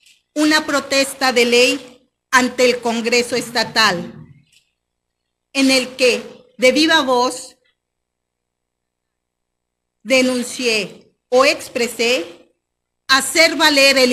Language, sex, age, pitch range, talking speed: Spanish, female, 40-59, 235-285 Hz, 85 wpm